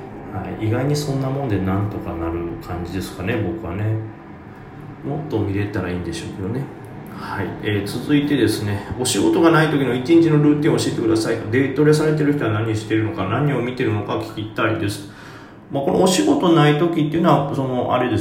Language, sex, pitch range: Japanese, male, 100-135 Hz